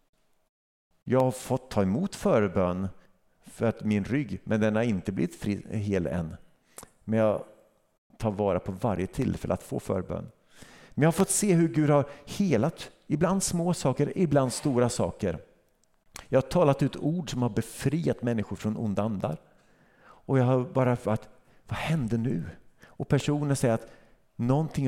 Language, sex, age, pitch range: Swedish, male, 50-69, 100-130 Hz